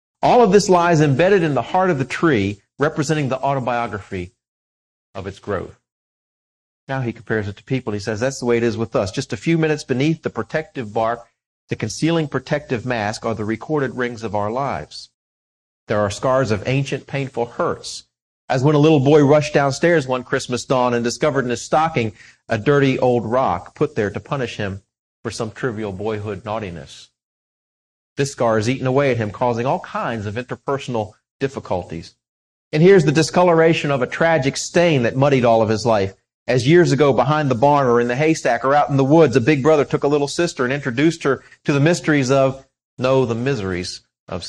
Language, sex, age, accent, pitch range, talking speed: English, male, 40-59, American, 115-150 Hz, 200 wpm